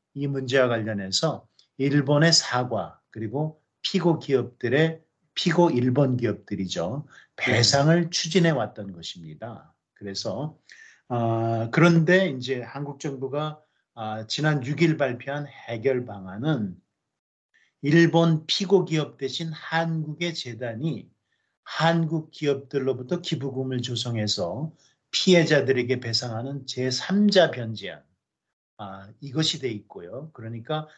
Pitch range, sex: 110-150 Hz, male